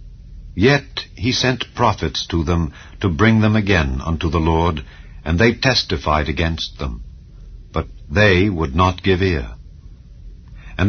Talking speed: 140 wpm